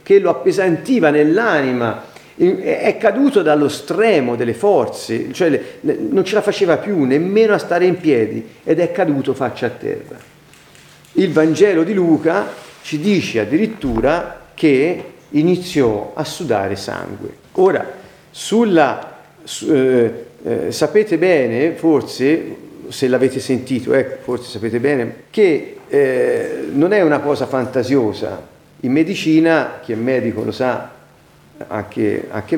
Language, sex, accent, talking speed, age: Italian, male, native, 130 wpm, 40-59